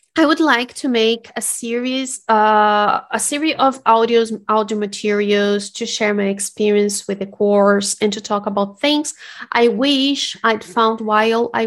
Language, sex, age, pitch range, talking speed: English, female, 30-49, 210-260 Hz, 165 wpm